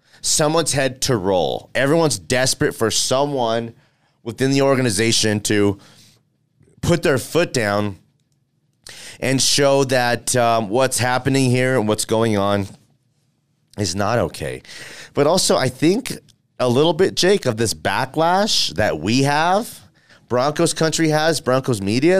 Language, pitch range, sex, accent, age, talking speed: English, 105-135 Hz, male, American, 30-49, 130 wpm